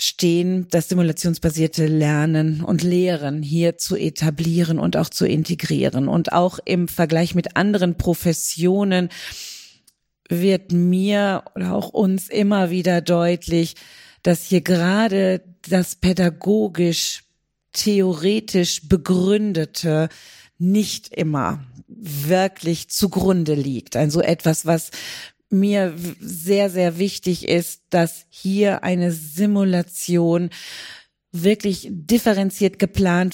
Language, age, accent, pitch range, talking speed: German, 40-59, German, 170-190 Hz, 95 wpm